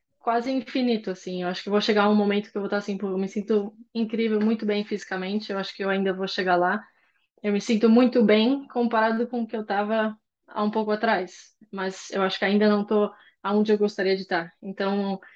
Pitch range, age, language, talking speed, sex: 190-220 Hz, 10-29, Portuguese, 235 wpm, female